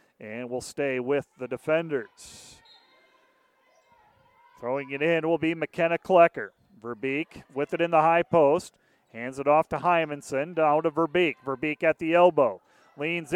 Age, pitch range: 40-59, 150-185 Hz